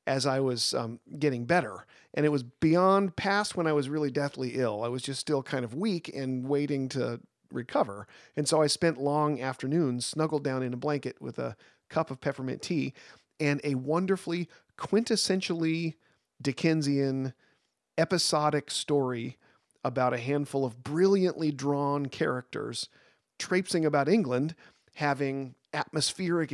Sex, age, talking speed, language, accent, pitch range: male, 40-59, 145 wpm, English, American, 125-160 Hz